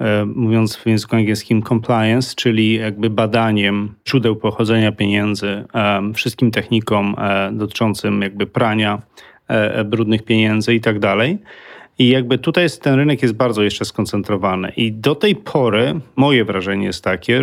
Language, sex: Polish, male